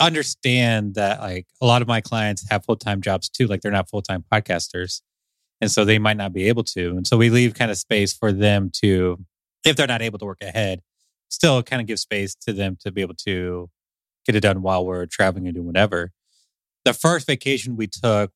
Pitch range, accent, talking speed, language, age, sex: 95-115 Hz, American, 225 wpm, English, 30-49, male